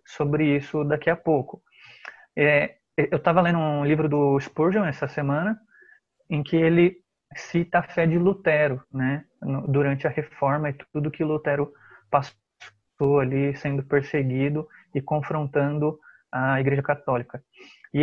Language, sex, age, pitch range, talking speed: Portuguese, male, 20-39, 140-165 Hz, 140 wpm